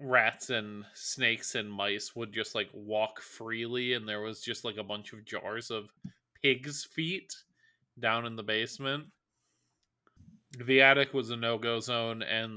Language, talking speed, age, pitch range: English, 160 wpm, 20-39, 110-135 Hz